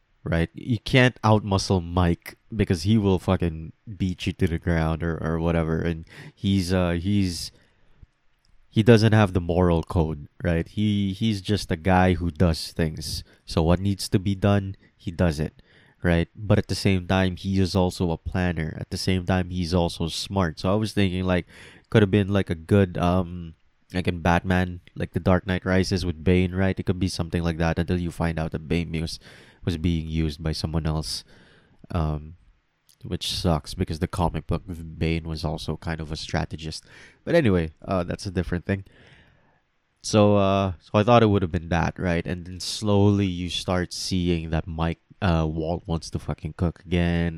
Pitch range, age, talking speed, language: 85-100 Hz, 20-39, 195 wpm, English